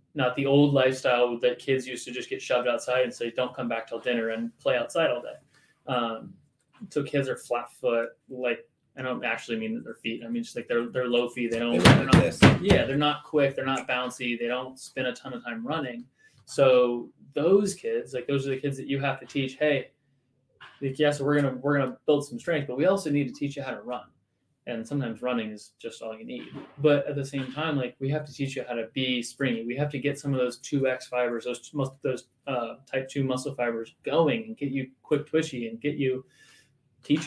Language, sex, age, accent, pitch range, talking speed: English, male, 20-39, American, 125-145 Hz, 245 wpm